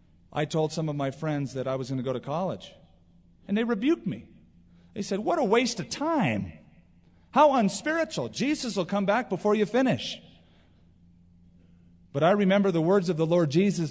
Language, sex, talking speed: English, male, 185 wpm